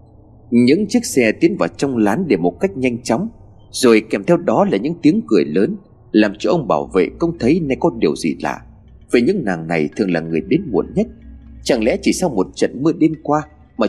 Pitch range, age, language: 95-155 Hz, 30-49, Vietnamese